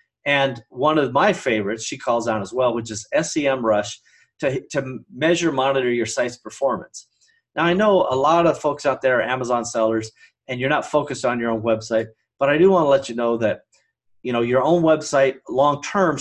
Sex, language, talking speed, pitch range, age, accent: male, English, 205 wpm, 120-170 Hz, 40-59, American